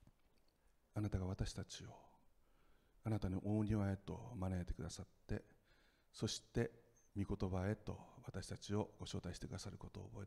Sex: male